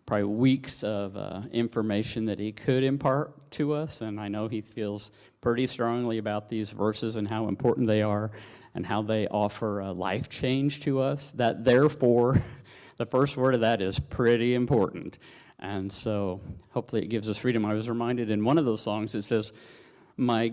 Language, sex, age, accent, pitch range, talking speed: English, male, 50-69, American, 110-130 Hz, 185 wpm